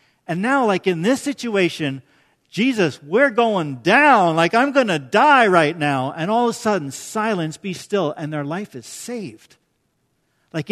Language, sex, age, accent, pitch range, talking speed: English, male, 50-69, American, 165-230 Hz, 175 wpm